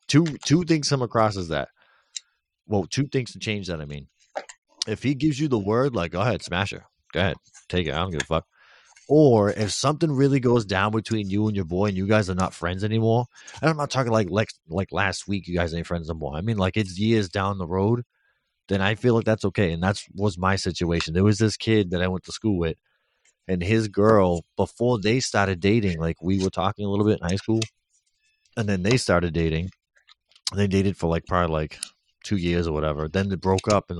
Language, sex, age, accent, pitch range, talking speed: English, male, 30-49, American, 90-115 Hz, 235 wpm